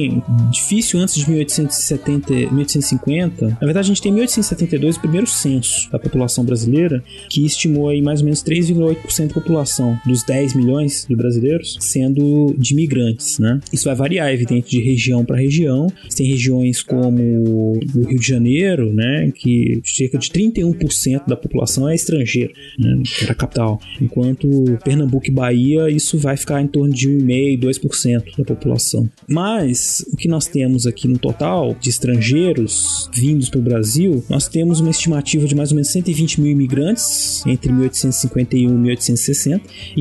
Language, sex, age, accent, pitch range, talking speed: Portuguese, male, 20-39, Brazilian, 125-160 Hz, 155 wpm